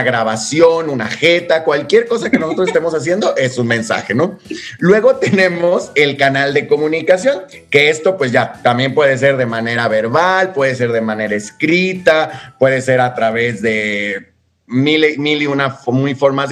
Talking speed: 160 wpm